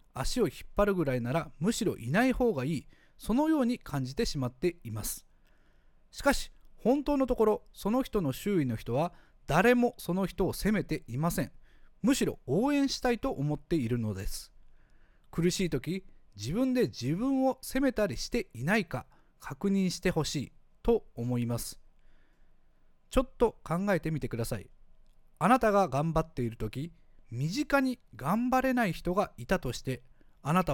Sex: male